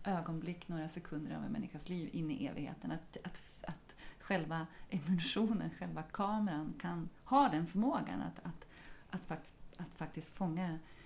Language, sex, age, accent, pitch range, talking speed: Swedish, female, 30-49, native, 165-215 Hz, 150 wpm